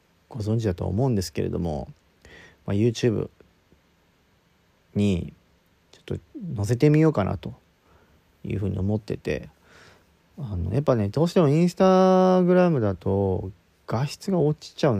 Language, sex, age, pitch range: Japanese, male, 40-59, 100-135 Hz